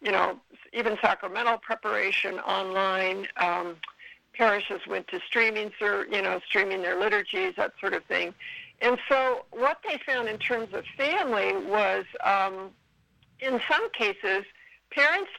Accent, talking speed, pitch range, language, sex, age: American, 135 wpm, 190-245 Hz, English, female, 60-79